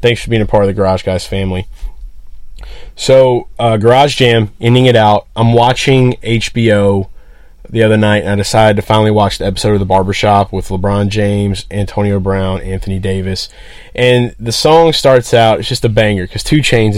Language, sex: English, male